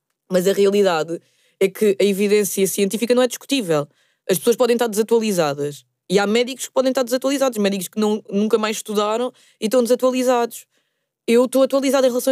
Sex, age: female, 20-39